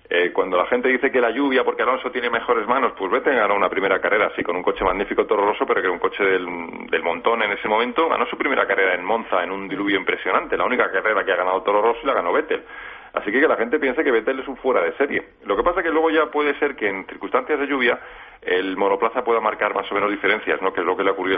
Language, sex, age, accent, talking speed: Spanish, male, 40-59, Spanish, 285 wpm